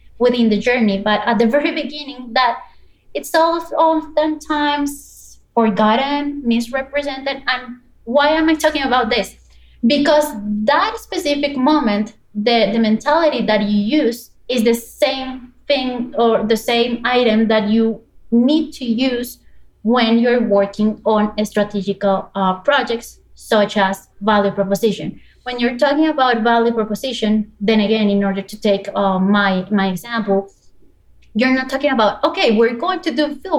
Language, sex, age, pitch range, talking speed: English, female, 20-39, 210-270 Hz, 145 wpm